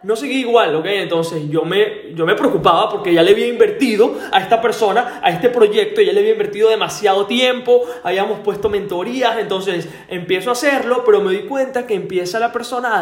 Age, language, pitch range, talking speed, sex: 20-39, Spanish, 190-290 Hz, 200 wpm, male